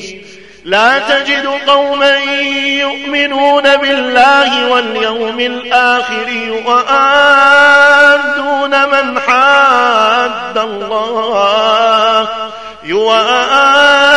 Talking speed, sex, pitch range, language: 40 wpm, male, 220-250 Hz, Arabic